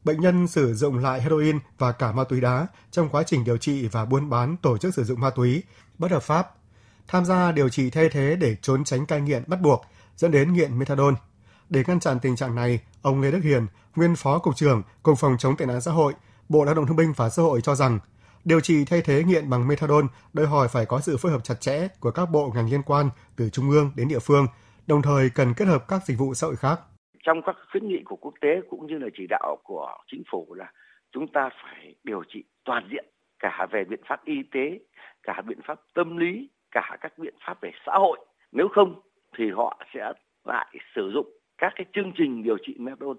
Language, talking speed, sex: Vietnamese, 240 wpm, male